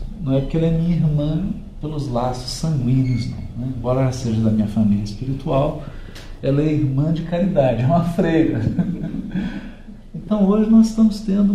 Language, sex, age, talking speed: Portuguese, male, 50-69, 155 wpm